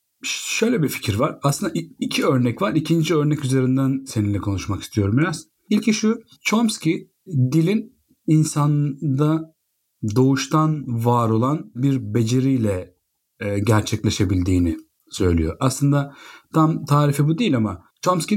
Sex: male